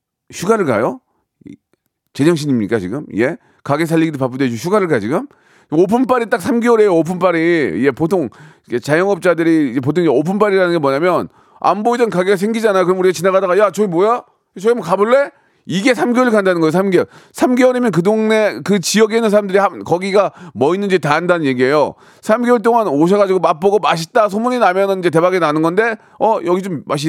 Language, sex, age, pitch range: Korean, male, 40-59, 155-215 Hz